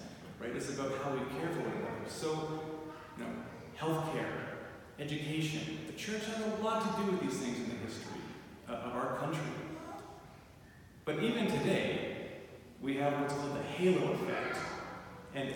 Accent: American